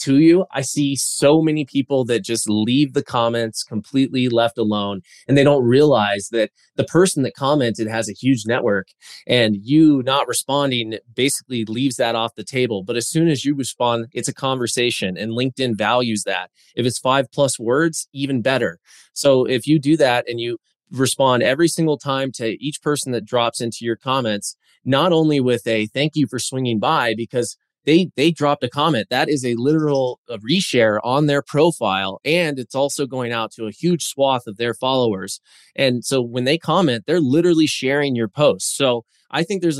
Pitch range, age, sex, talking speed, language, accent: 115-145 Hz, 20-39, male, 190 wpm, English, American